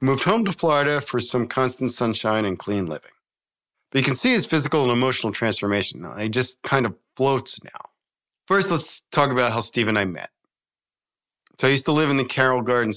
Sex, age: male, 40-59